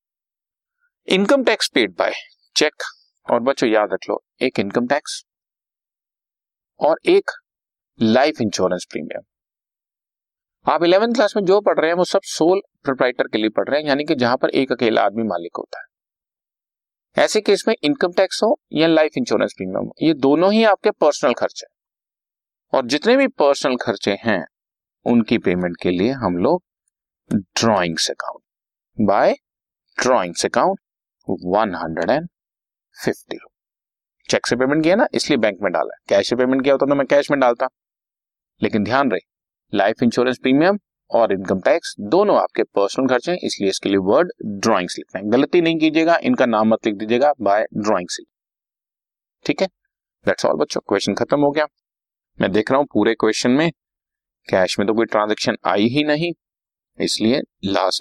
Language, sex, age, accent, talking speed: Hindi, male, 50-69, native, 155 wpm